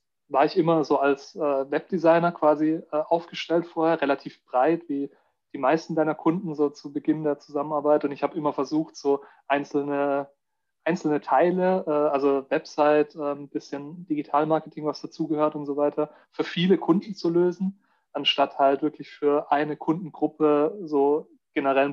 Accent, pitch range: German, 140-155 Hz